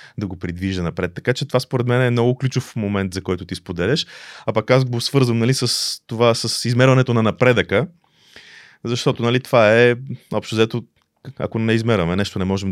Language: Bulgarian